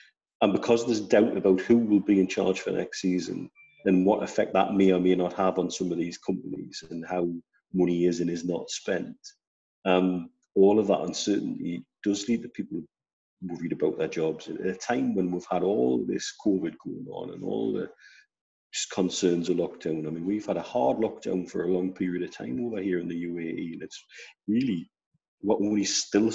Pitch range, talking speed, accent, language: 90-105 Hz, 205 wpm, British, English